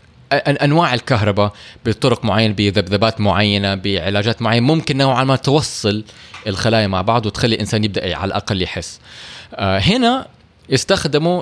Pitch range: 105-140 Hz